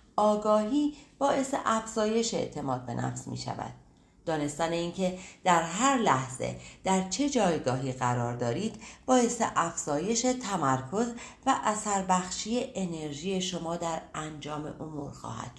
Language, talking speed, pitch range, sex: Persian, 120 wpm, 140-225 Hz, female